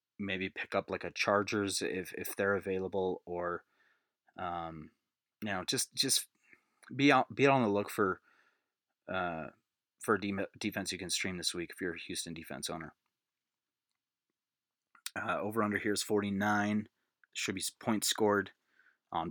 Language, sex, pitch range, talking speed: English, male, 95-110 Hz, 150 wpm